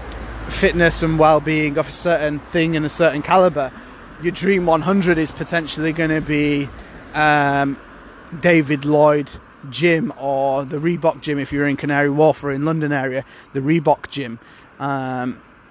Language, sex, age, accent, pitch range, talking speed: English, male, 20-39, British, 140-160 Hz, 155 wpm